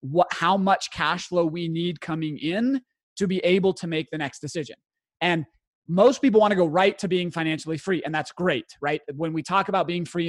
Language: English